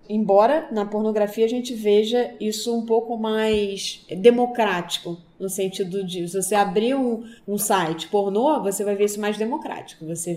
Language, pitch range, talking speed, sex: Portuguese, 195-235 Hz, 160 wpm, female